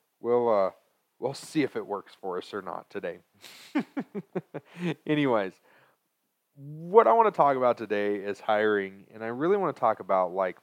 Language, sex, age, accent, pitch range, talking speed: English, male, 30-49, American, 105-140 Hz, 170 wpm